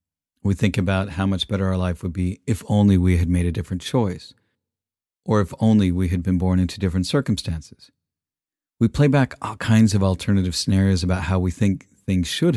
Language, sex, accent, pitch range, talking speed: English, male, American, 90-115 Hz, 200 wpm